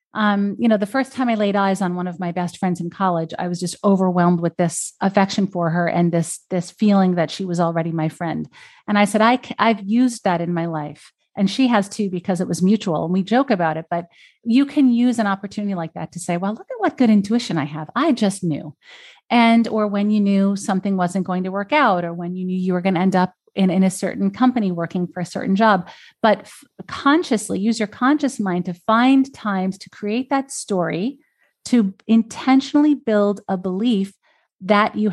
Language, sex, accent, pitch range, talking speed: English, female, American, 180-225 Hz, 225 wpm